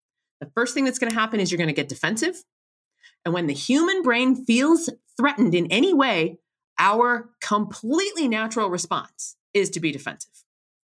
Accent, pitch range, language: American, 175-255 Hz, English